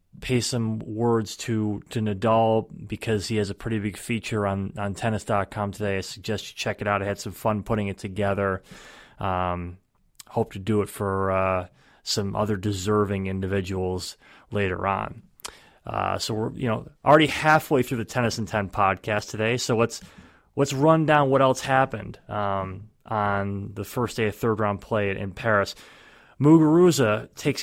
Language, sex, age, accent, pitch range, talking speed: English, male, 30-49, American, 100-120 Hz, 165 wpm